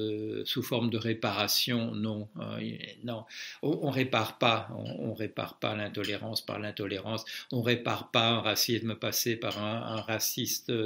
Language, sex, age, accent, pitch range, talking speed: French, male, 60-79, French, 110-120 Hz, 165 wpm